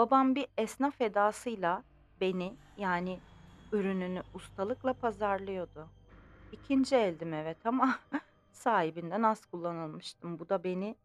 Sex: female